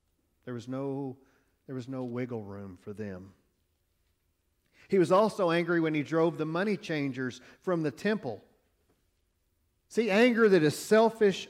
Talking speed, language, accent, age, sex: 135 wpm, English, American, 40-59, male